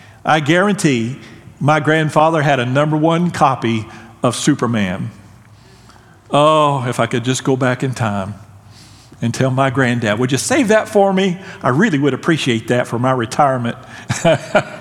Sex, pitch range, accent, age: male, 120-165 Hz, American, 50-69